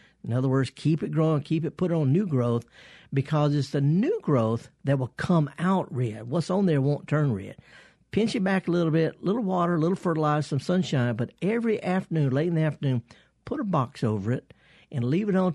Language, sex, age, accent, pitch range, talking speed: English, male, 50-69, American, 130-180 Hz, 230 wpm